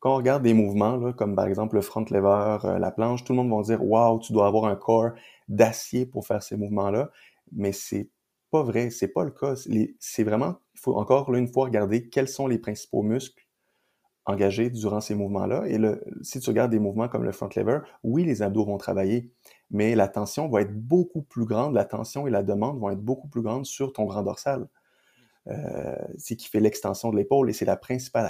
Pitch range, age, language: 105-130 Hz, 30-49, French